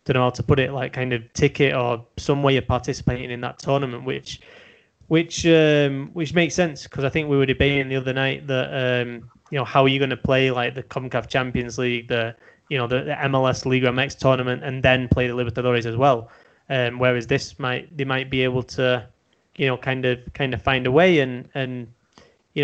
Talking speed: 230 wpm